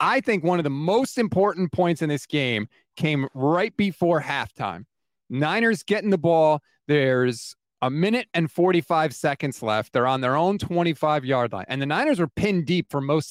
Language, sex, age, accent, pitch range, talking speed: English, male, 30-49, American, 145-185 Hz, 185 wpm